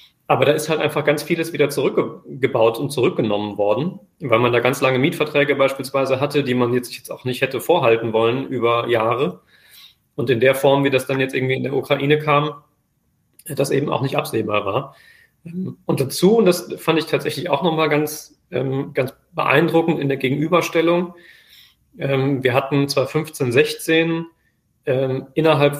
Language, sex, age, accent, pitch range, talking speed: German, male, 30-49, German, 125-150 Hz, 165 wpm